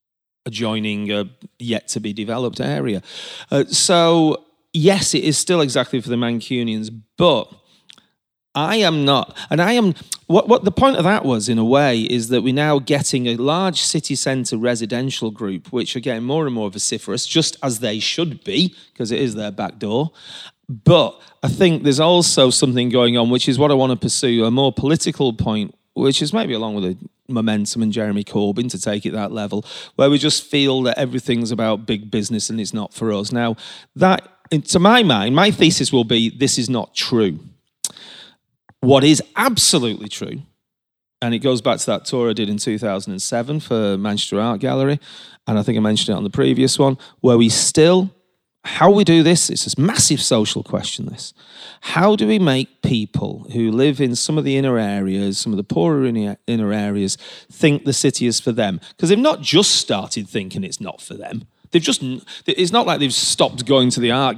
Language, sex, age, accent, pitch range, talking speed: English, male, 30-49, British, 110-150 Hz, 200 wpm